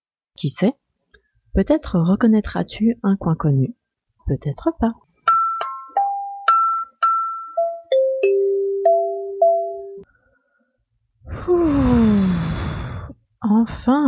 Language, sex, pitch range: French, female, 165-265 Hz